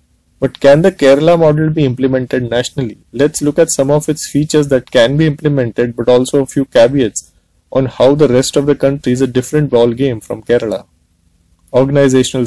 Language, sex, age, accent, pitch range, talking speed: English, male, 20-39, Indian, 120-145 Hz, 190 wpm